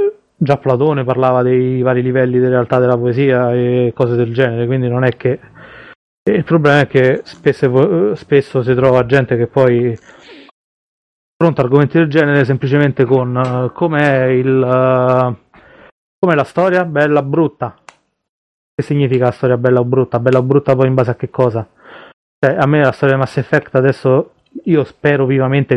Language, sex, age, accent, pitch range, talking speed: Italian, male, 30-49, native, 120-140 Hz, 170 wpm